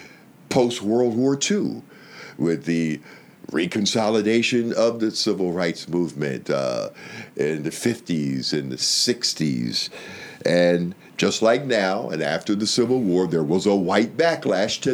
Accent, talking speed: American, 135 wpm